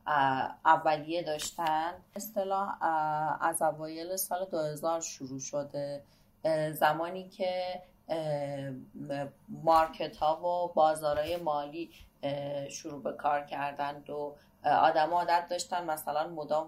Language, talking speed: English, 95 wpm